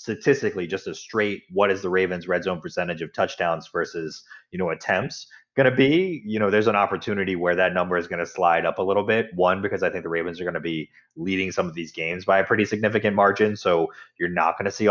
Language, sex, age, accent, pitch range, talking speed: English, male, 30-49, American, 85-105 Hz, 250 wpm